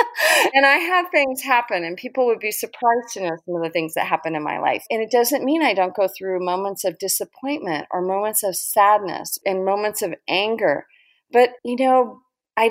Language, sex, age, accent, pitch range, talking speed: English, female, 30-49, American, 175-240 Hz, 210 wpm